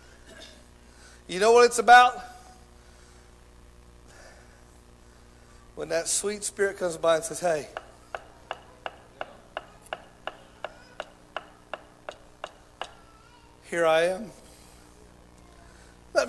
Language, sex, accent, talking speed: English, male, American, 65 wpm